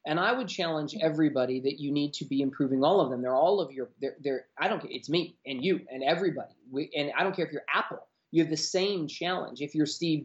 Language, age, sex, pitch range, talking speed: English, 30-49, male, 160-240 Hz, 260 wpm